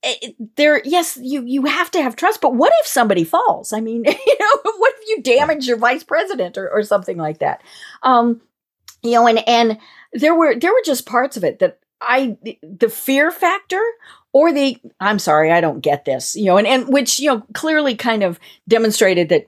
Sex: female